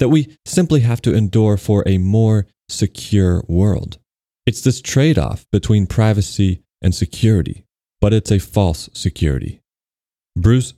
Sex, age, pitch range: male, 30-49, 95-120 Hz